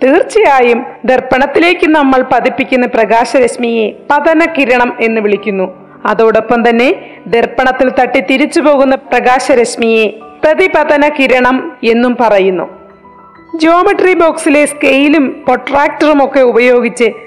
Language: Malayalam